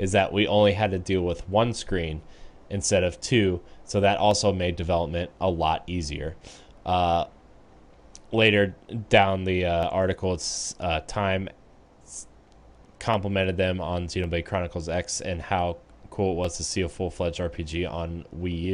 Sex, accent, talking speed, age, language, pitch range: male, American, 150 wpm, 20-39, English, 85-100 Hz